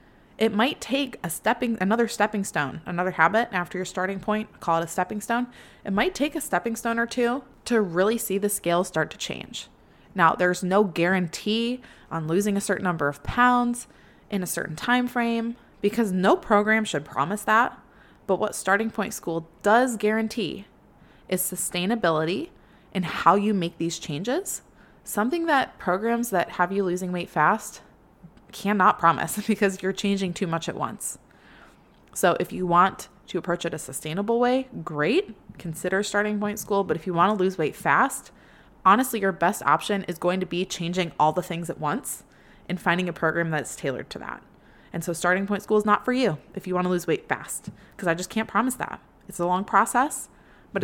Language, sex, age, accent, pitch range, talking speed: English, female, 20-39, American, 175-220 Hz, 190 wpm